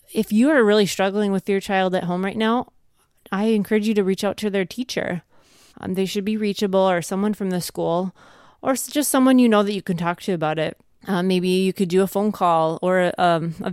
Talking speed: 235 wpm